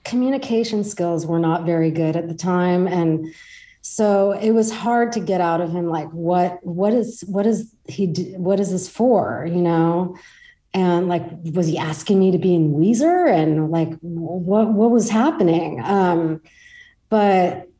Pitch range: 165-200 Hz